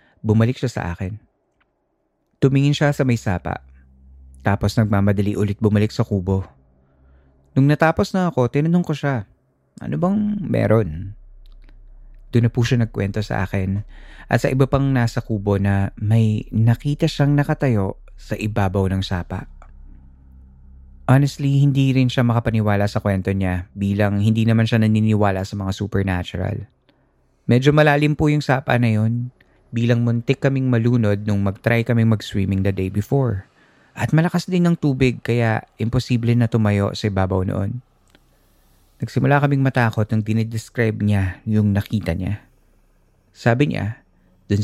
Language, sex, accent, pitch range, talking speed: Filipino, male, native, 95-125 Hz, 140 wpm